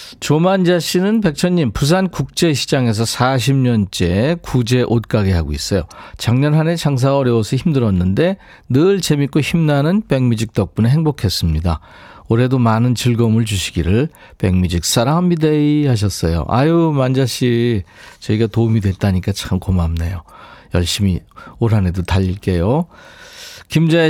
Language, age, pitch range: Korean, 40-59, 105-160 Hz